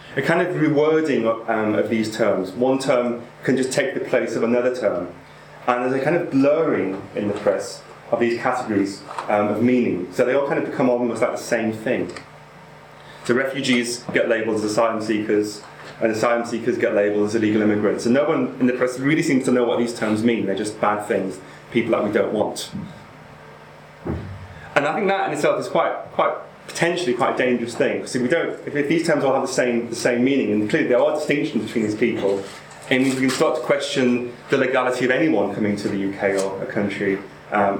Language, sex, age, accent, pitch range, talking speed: English, male, 30-49, British, 105-135 Hz, 220 wpm